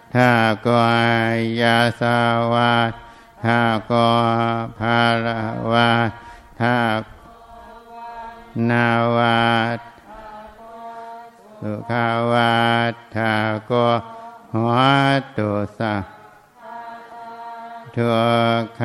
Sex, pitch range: male, 115-120 Hz